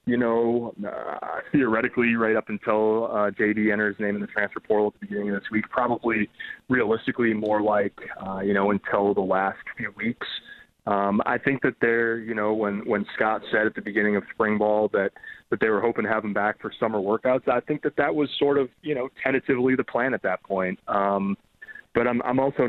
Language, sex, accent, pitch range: English, male, American, 105-125 Hz